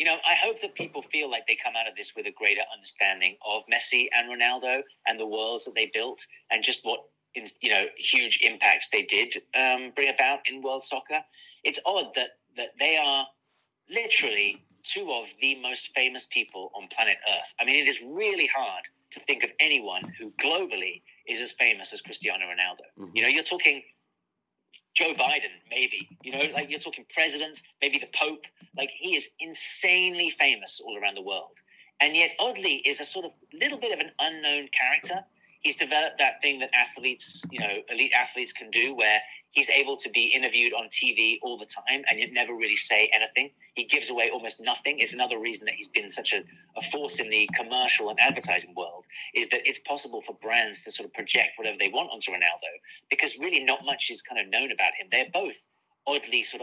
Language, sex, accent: English, male, British